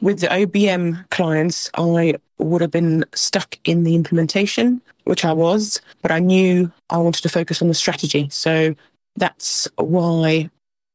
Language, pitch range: English, 150-180 Hz